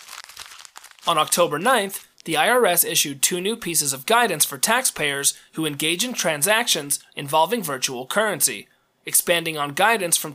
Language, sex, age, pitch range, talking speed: English, male, 30-49, 145-215 Hz, 140 wpm